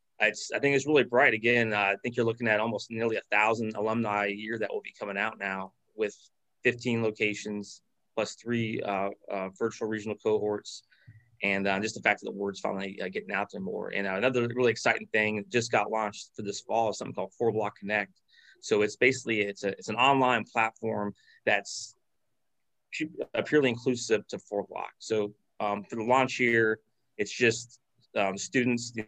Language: English